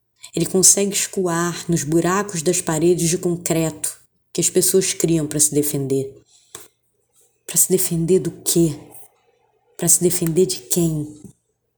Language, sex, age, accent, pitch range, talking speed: Portuguese, female, 20-39, Brazilian, 165-195 Hz, 135 wpm